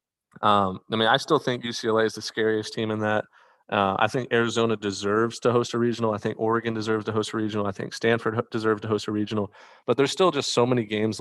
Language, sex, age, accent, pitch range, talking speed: English, male, 30-49, American, 105-120 Hz, 240 wpm